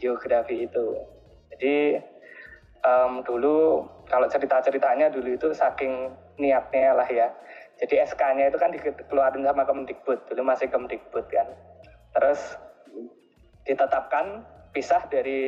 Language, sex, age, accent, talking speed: Indonesian, male, 20-39, native, 110 wpm